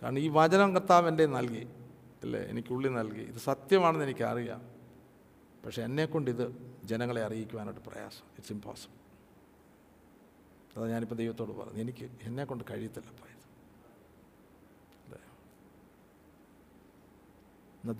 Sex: male